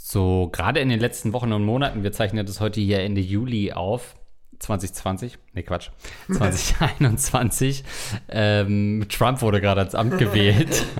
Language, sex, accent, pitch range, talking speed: German, male, German, 95-120 Hz, 155 wpm